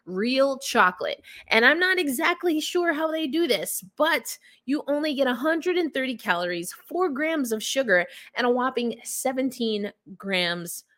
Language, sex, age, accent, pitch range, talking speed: English, female, 20-39, American, 195-300 Hz, 140 wpm